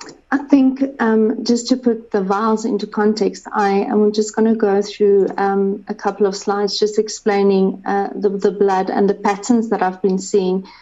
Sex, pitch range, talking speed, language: female, 200-225 Hz, 195 wpm, English